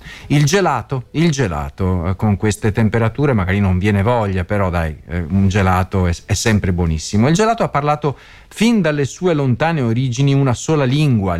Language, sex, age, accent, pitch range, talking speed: Italian, male, 40-59, native, 110-175 Hz, 160 wpm